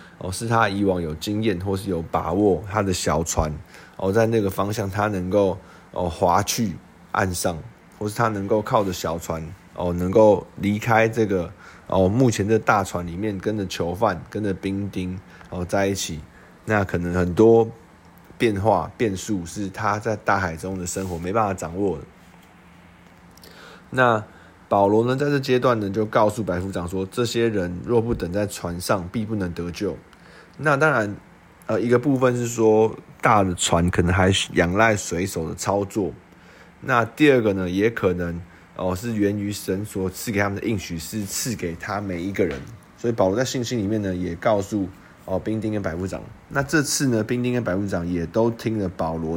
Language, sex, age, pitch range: Chinese, male, 20-39, 90-110 Hz